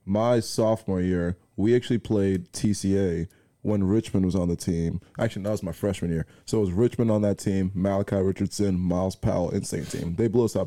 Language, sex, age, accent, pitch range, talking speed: English, male, 20-39, American, 95-115 Hz, 200 wpm